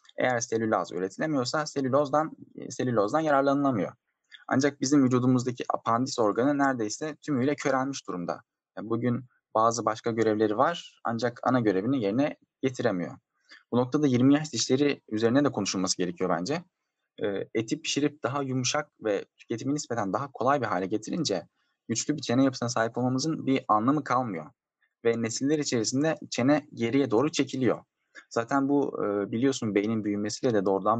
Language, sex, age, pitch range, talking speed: Turkish, male, 10-29, 105-140 Hz, 140 wpm